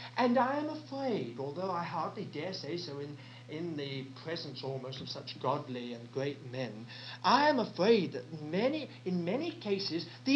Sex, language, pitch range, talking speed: male, English, 125-185 Hz, 175 wpm